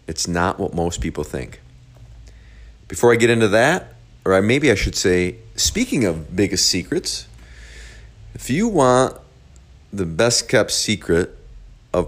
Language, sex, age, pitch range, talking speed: English, male, 40-59, 75-105 Hz, 140 wpm